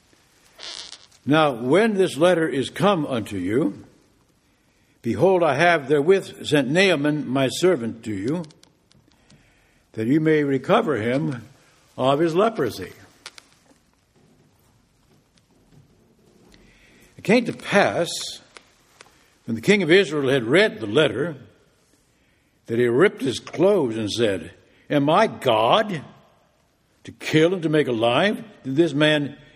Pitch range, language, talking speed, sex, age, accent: 120-165 Hz, English, 120 wpm, male, 60-79, American